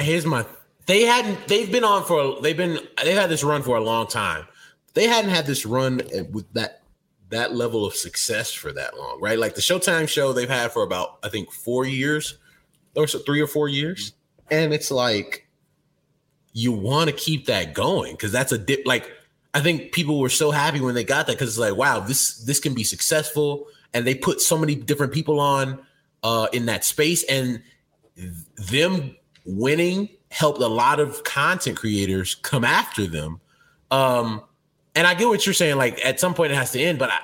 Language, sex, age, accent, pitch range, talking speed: English, male, 20-39, American, 125-175 Hz, 200 wpm